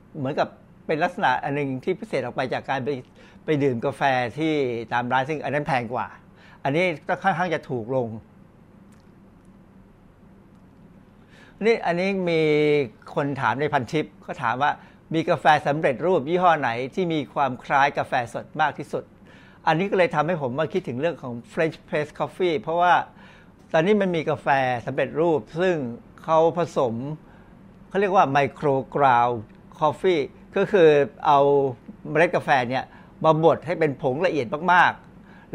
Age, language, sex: 60-79, Thai, male